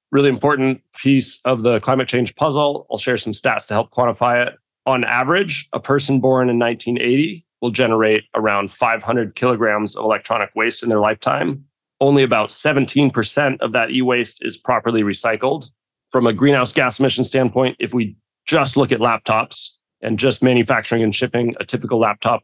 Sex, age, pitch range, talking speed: male, 30-49, 110-130 Hz, 170 wpm